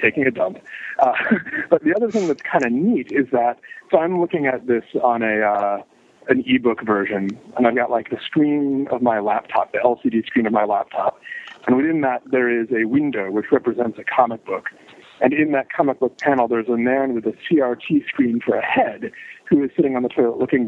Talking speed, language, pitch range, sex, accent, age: 220 wpm, English, 115-155 Hz, male, American, 40-59